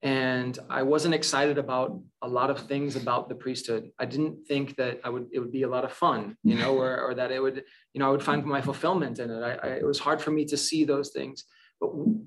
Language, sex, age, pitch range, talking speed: English, male, 20-39, 135-150 Hz, 260 wpm